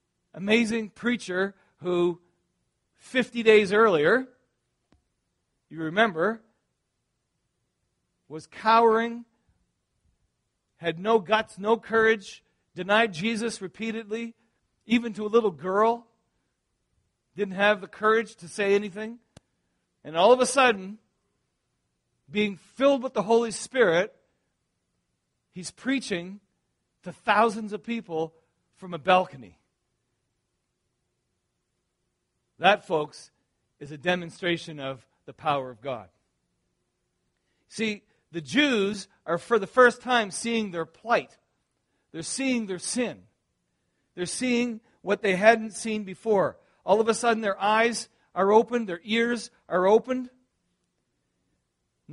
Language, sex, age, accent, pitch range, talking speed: English, male, 40-59, American, 170-225 Hz, 110 wpm